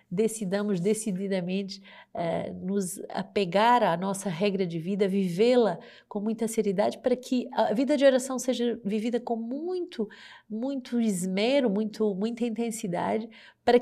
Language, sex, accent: Portuguese, female, Brazilian